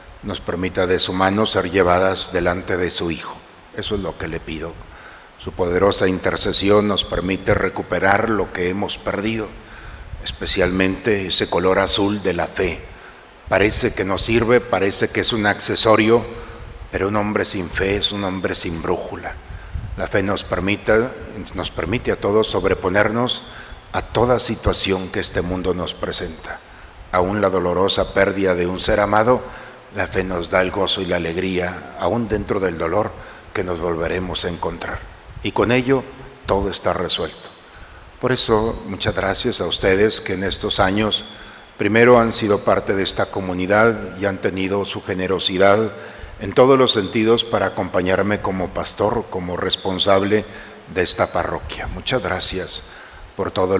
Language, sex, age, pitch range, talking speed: Spanish, male, 60-79, 95-110 Hz, 155 wpm